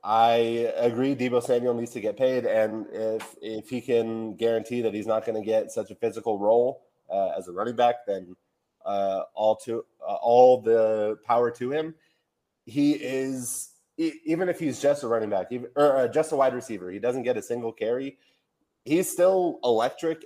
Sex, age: male, 20-39